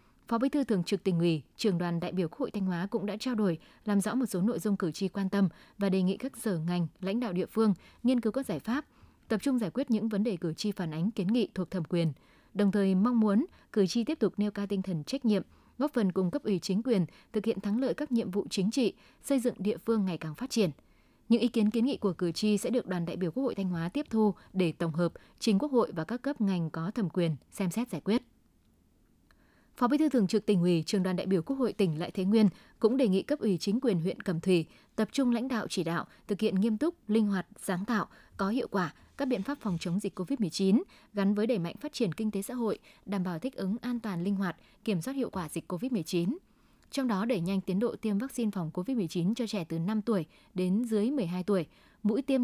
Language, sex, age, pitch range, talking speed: Vietnamese, female, 20-39, 185-230 Hz, 265 wpm